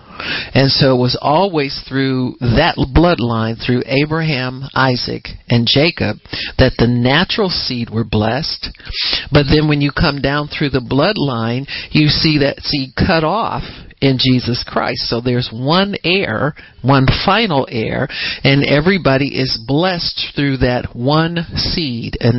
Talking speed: 140 wpm